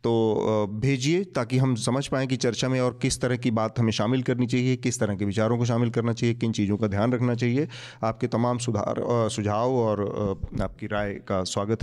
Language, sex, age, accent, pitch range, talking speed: Hindi, male, 40-59, native, 110-130 Hz, 210 wpm